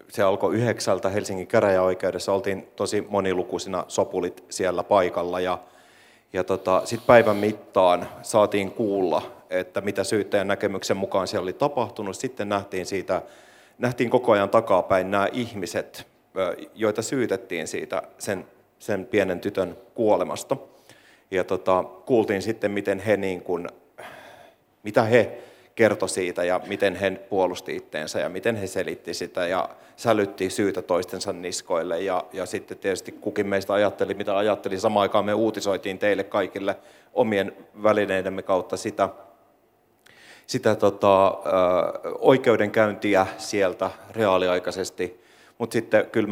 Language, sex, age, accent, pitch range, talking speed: Finnish, male, 30-49, native, 95-105 Hz, 125 wpm